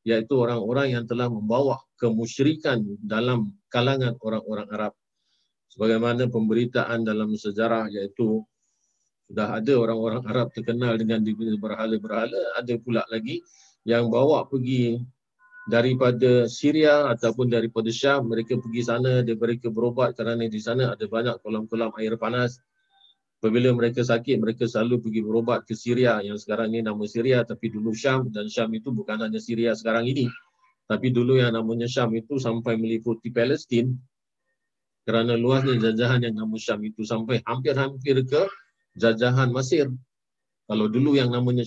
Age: 50-69